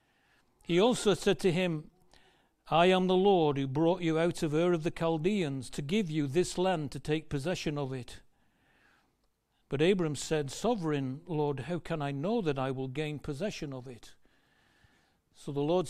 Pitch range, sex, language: 140-180 Hz, male, English